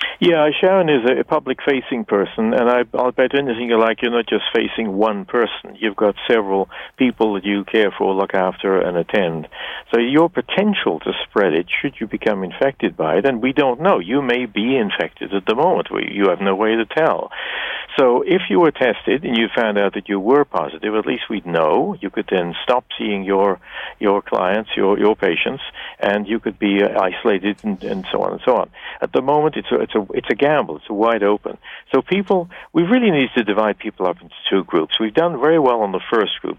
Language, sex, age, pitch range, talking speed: English, male, 60-79, 100-145 Hz, 225 wpm